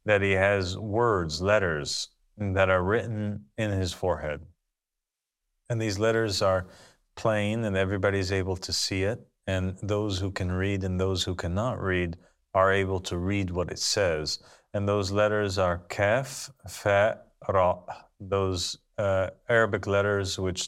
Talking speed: 150 wpm